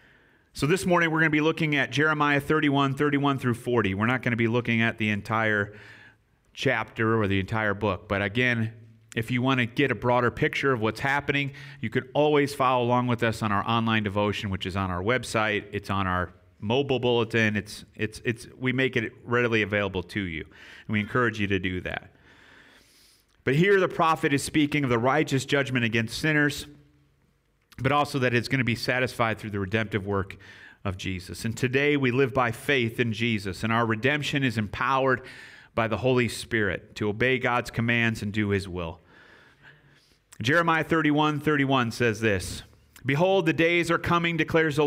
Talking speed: 190 wpm